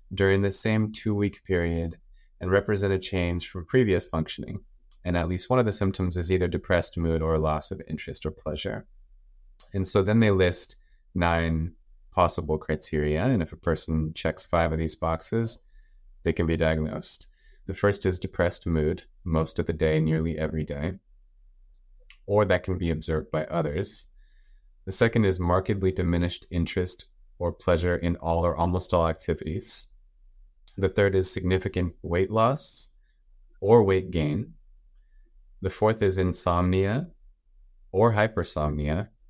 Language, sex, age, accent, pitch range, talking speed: English, male, 30-49, American, 80-95 Hz, 150 wpm